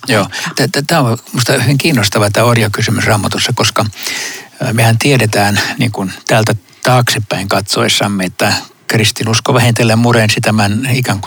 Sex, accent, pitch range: male, native, 110-125 Hz